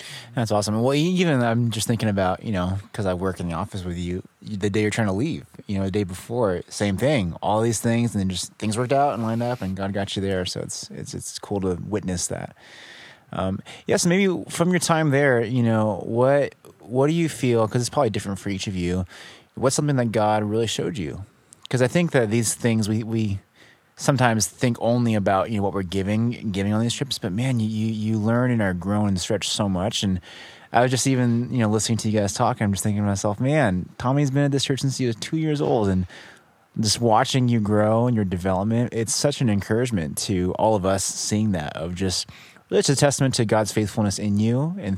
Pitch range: 100-125 Hz